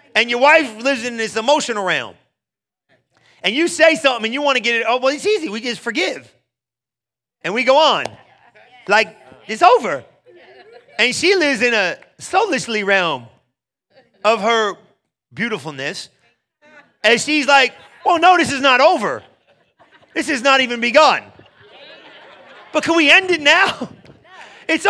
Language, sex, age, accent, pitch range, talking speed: English, male, 30-49, American, 245-330 Hz, 155 wpm